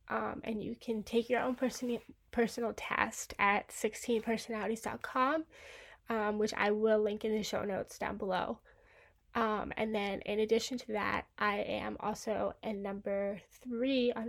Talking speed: 145 wpm